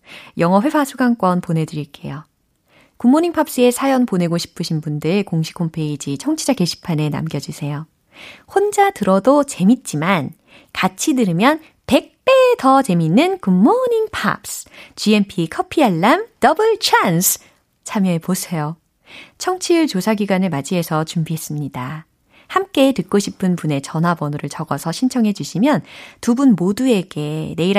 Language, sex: Korean, female